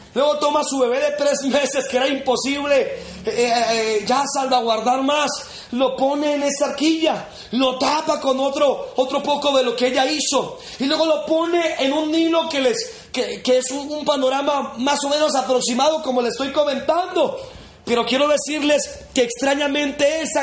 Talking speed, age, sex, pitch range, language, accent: 180 wpm, 40-59, male, 250-300 Hz, Spanish, Mexican